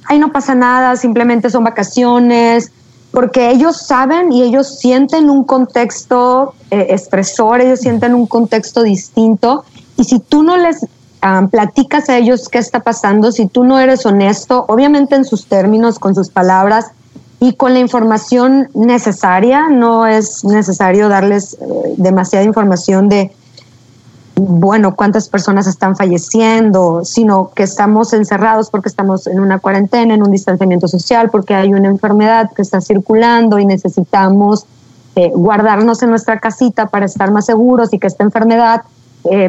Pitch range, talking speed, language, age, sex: 195-245 Hz, 150 wpm, Spanish, 20-39, female